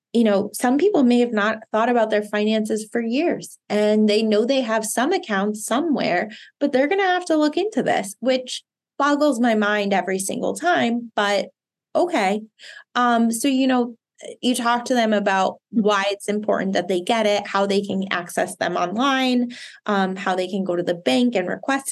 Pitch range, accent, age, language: 200-245 Hz, American, 20-39, English